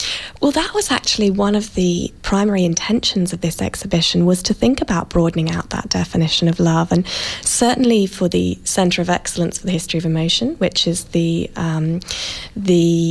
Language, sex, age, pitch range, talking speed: English, female, 20-39, 165-195 Hz, 180 wpm